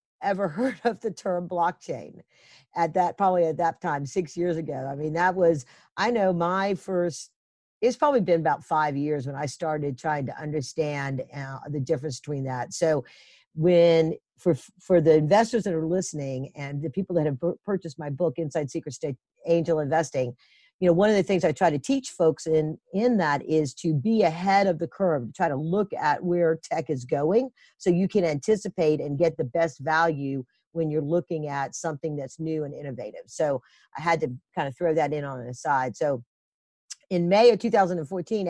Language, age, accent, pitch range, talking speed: English, 50-69, American, 150-185 Hz, 195 wpm